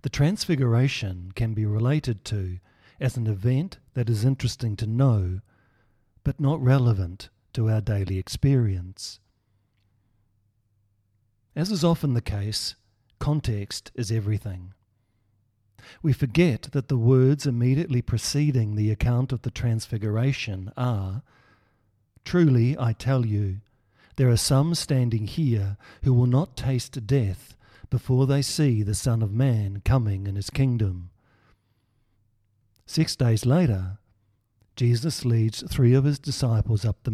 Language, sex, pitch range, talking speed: English, male, 105-130 Hz, 125 wpm